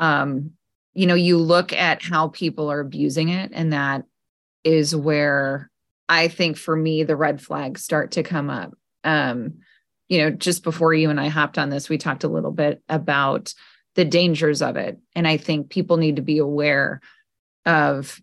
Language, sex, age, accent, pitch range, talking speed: English, female, 20-39, American, 150-170 Hz, 185 wpm